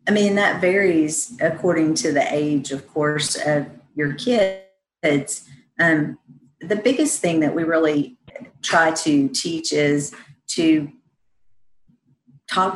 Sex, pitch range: female, 145-175 Hz